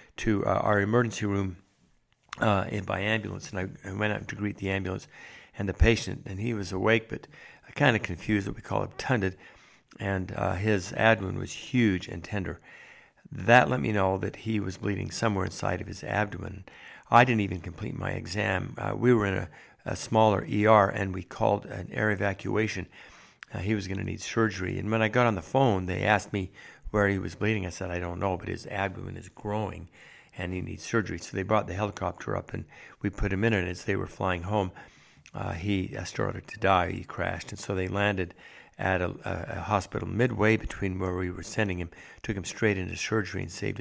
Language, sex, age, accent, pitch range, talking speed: English, male, 60-79, American, 95-110 Hz, 210 wpm